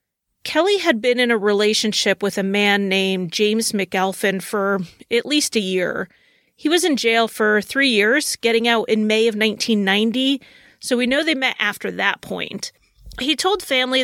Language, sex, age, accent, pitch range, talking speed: English, female, 30-49, American, 210-250 Hz, 175 wpm